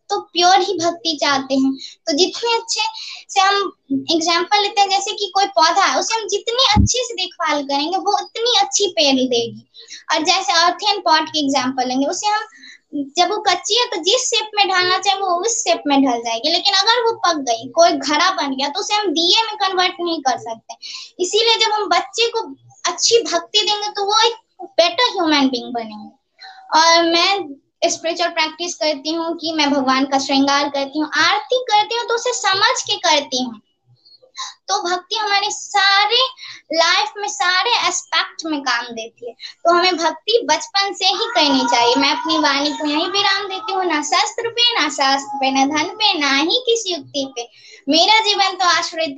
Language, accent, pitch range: Hindi, native, 290-405 Hz